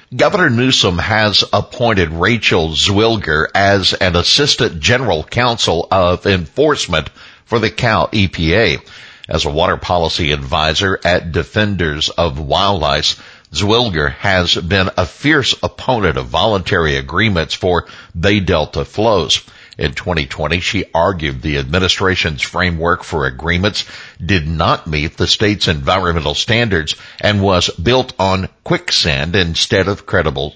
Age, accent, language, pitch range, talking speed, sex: 60-79, American, English, 80-100 Hz, 125 wpm, male